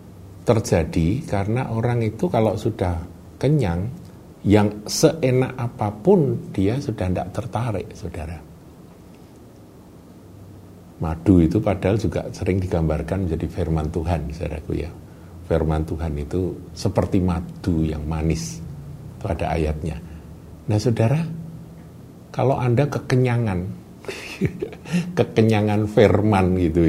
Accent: native